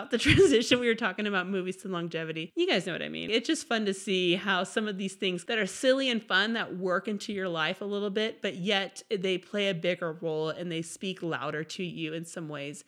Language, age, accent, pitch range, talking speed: English, 30-49, American, 185-235 Hz, 250 wpm